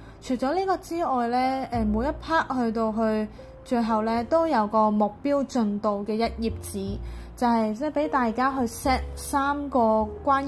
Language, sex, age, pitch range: Chinese, female, 20-39, 220-265 Hz